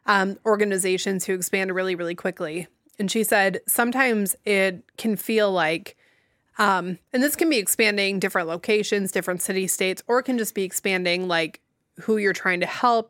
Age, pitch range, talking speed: 20-39, 190-235 Hz, 175 wpm